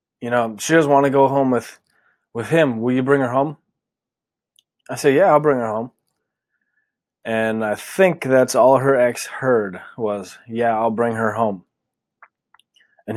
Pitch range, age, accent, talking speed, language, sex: 115-140 Hz, 20-39, American, 175 wpm, English, male